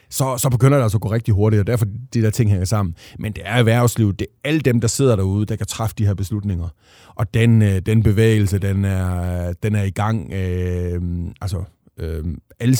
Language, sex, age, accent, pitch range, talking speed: Danish, male, 30-49, native, 100-120 Hz, 230 wpm